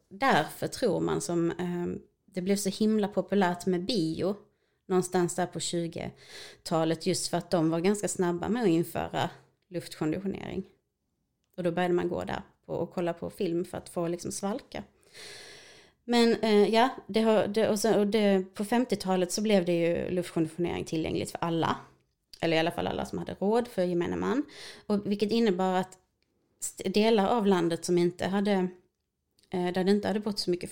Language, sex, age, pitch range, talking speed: English, female, 30-49, 170-200 Hz, 175 wpm